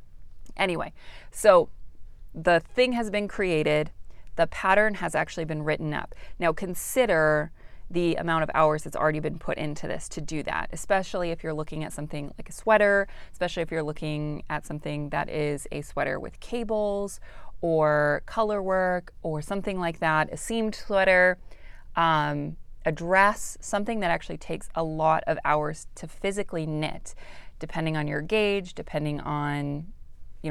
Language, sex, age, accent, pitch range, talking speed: English, female, 30-49, American, 150-185 Hz, 160 wpm